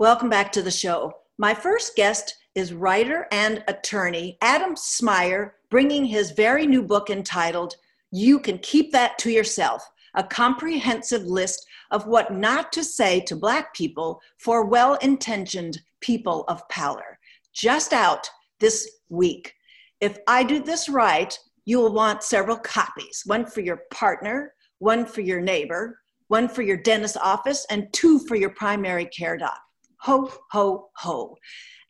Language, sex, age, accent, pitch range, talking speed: English, female, 50-69, American, 185-255 Hz, 145 wpm